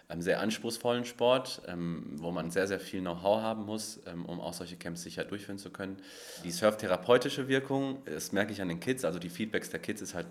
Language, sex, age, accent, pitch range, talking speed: German, male, 30-49, German, 85-105 Hz, 220 wpm